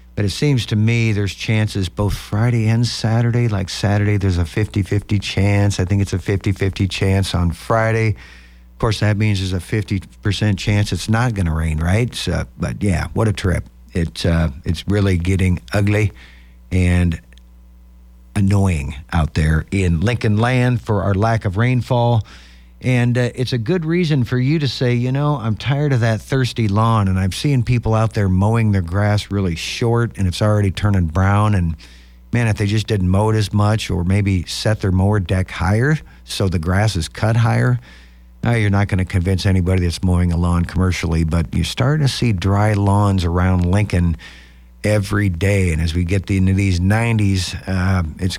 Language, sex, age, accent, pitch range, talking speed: English, male, 50-69, American, 90-110 Hz, 190 wpm